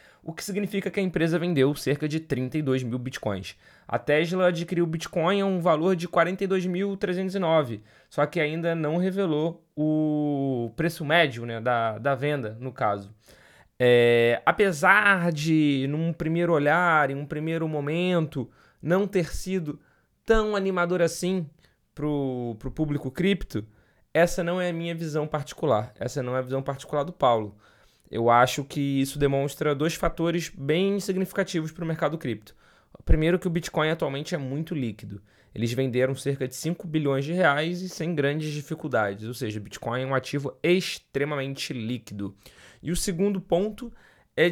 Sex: male